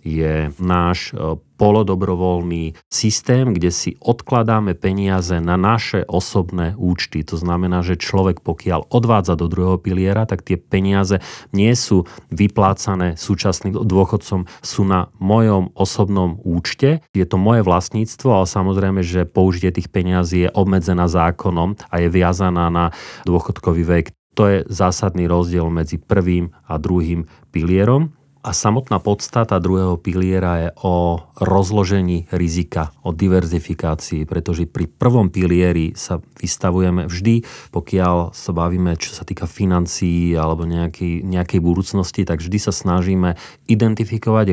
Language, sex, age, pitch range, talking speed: Slovak, male, 40-59, 85-100 Hz, 130 wpm